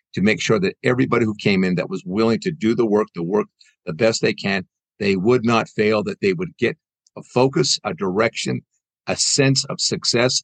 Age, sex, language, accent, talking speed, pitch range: 50-69, male, English, American, 215 wpm, 110-165 Hz